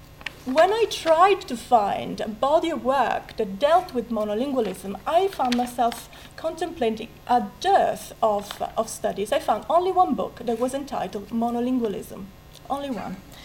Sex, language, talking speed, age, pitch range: female, English, 145 wpm, 40-59, 225-300 Hz